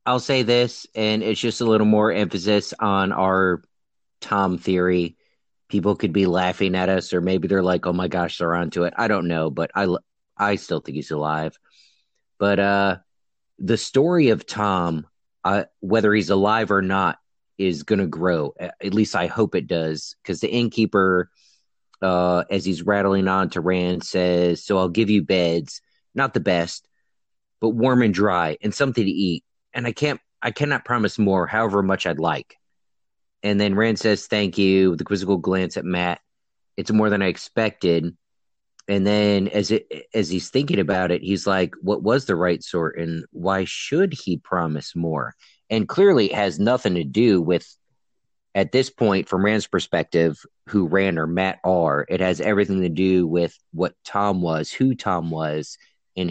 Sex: male